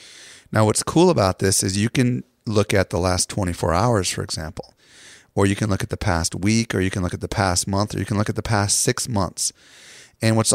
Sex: male